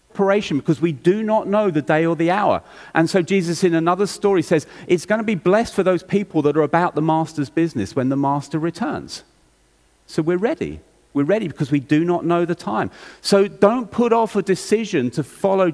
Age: 40-59